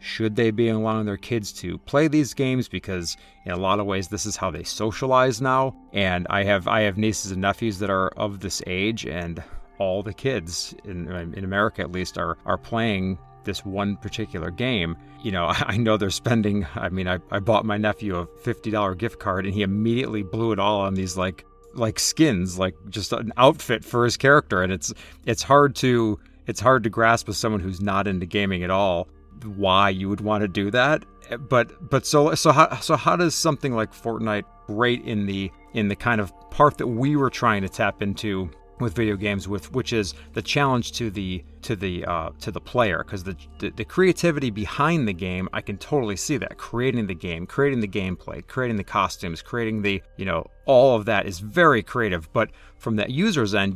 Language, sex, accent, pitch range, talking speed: English, male, American, 95-120 Hz, 210 wpm